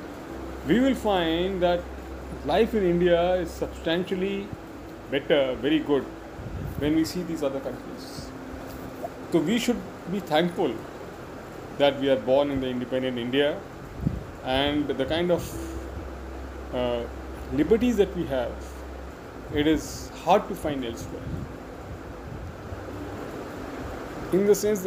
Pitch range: 125-165 Hz